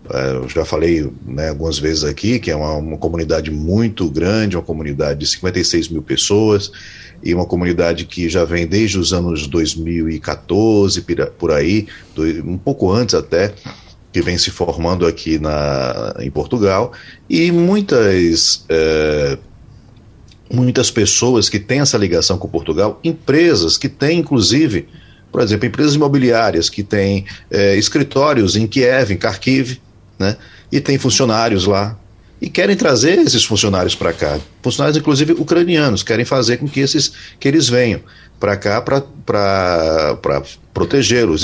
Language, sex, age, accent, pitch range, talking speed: Portuguese, male, 40-59, Brazilian, 85-125 Hz, 140 wpm